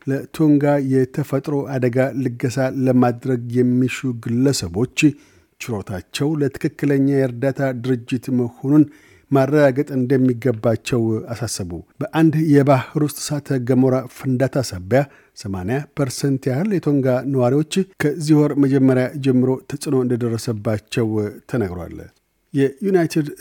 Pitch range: 125-140 Hz